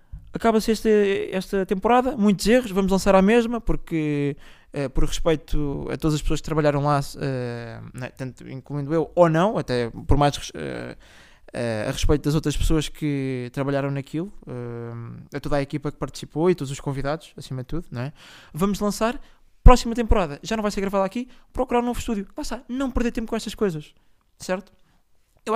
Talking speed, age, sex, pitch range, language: 170 wpm, 20-39, male, 145-205 Hz, Portuguese